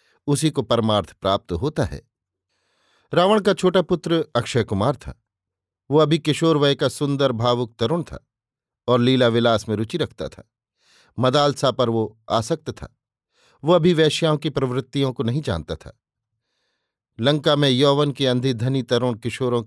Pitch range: 115-145 Hz